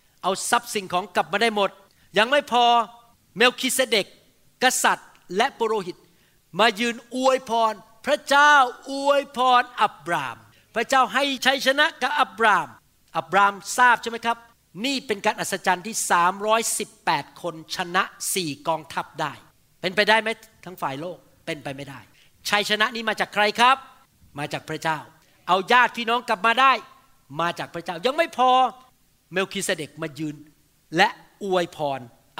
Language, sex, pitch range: Thai, male, 175-255 Hz